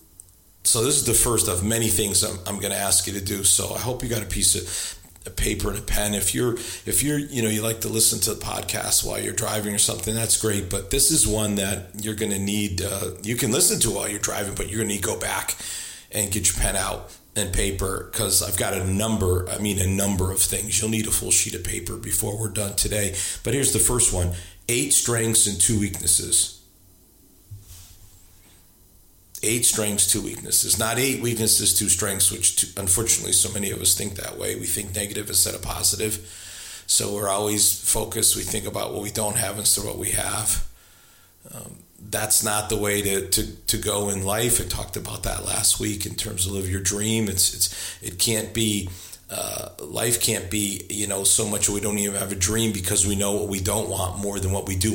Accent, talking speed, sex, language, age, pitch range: American, 225 wpm, male, English, 40-59, 95-110 Hz